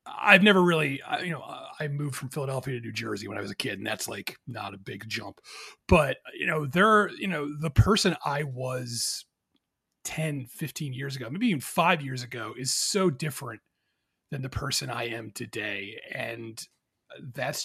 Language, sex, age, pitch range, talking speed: English, male, 30-49, 120-165 Hz, 185 wpm